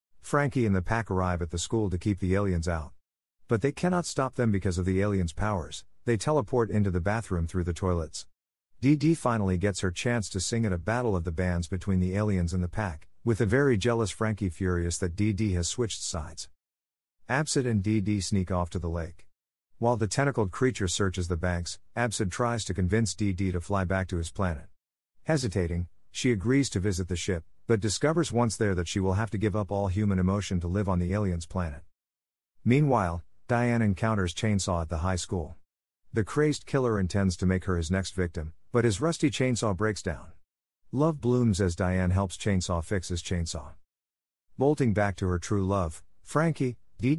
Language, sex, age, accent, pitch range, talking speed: English, male, 50-69, American, 85-115 Hz, 195 wpm